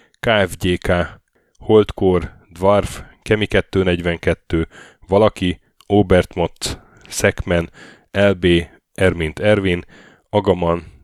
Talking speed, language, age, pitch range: 65 wpm, Hungarian, 10-29, 85-100 Hz